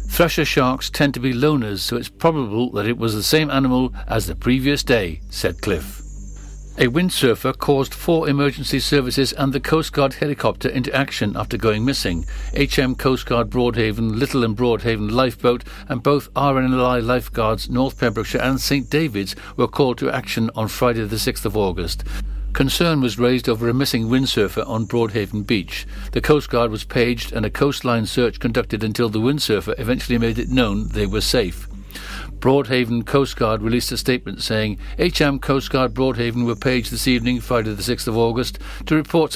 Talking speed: 175 wpm